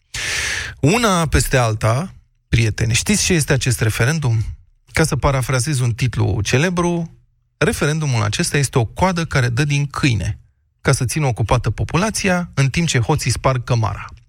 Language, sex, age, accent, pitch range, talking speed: Romanian, male, 30-49, native, 120-160 Hz, 145 wpm